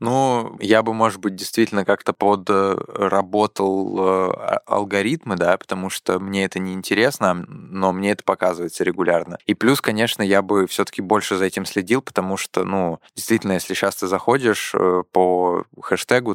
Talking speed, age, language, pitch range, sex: 155 wpm, 20-39, Russian, 95-105 Hz, male